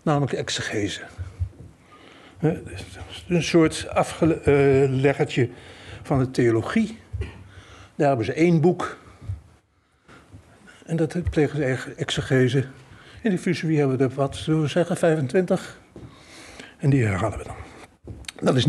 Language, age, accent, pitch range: Dutch, 60-79, Dutch, 120-170 Hz